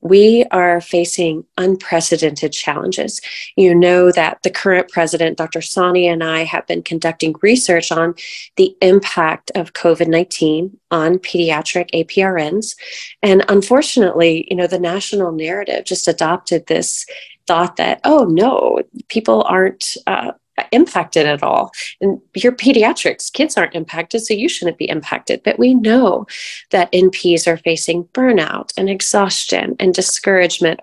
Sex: female